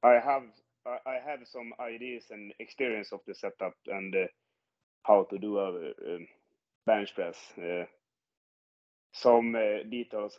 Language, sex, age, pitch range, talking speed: Italian, male, 30-49, 95-120 Hz, 140 wpm